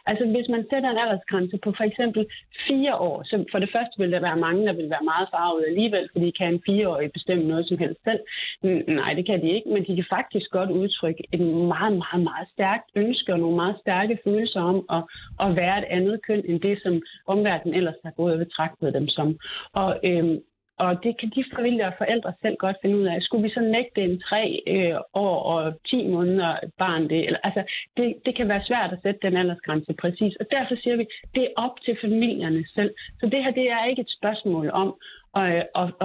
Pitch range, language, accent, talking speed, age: 175-225 Hz, Danish, native, 225 wpm, 30-49